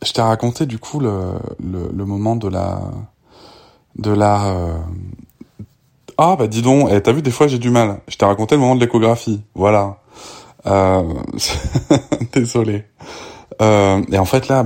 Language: French